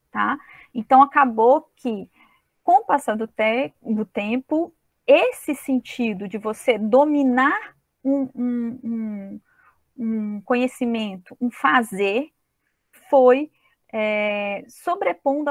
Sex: female